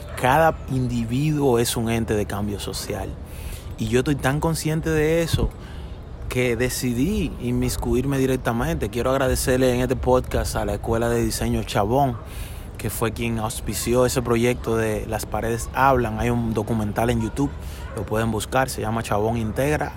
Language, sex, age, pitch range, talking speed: English, male, 20-39, 115-140 Hz, 155 wpm